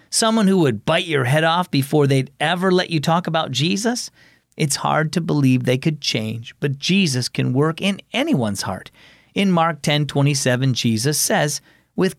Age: 40-59